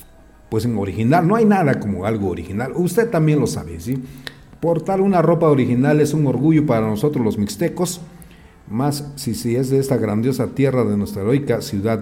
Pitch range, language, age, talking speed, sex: 110-155 Hz, Spanish, 40-59, 180 wpm, male